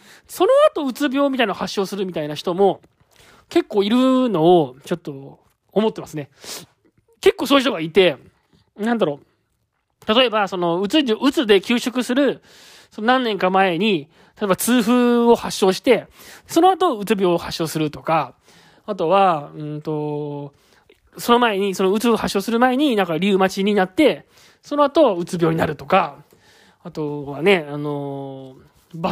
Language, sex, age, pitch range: Japanese, male, 20-39, 175-245 Hz